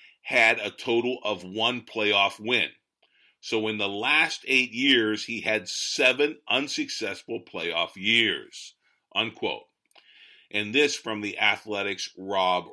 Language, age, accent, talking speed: English, 50-69, American, 125 wpm